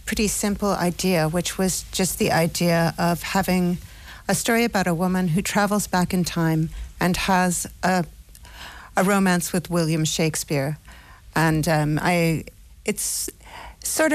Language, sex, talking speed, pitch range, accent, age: Italian, female, 140 wpm, 155-195 Hz, American, 50-69